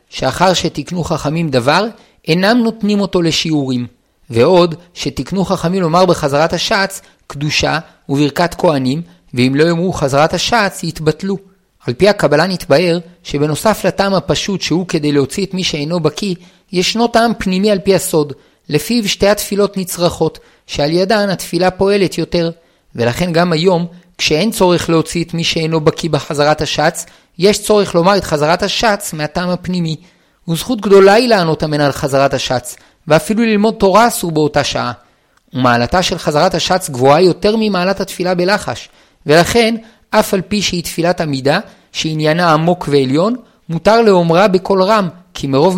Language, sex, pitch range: Hebrew, male, 155-195 Hz